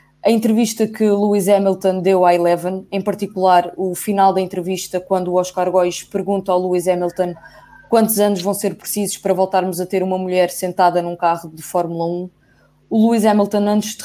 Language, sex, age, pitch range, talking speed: English, female, 20-39, 180-215 Hz, 190 wpm